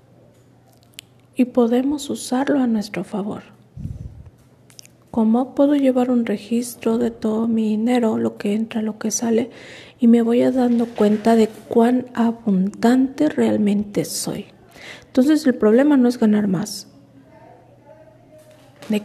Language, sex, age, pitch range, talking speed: Spanish, female, 40-59, 210-235 Hz, 125 wpm